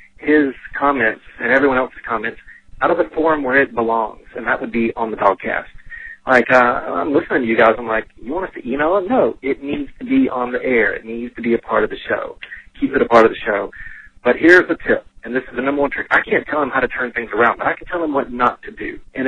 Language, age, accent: English, 40-59, American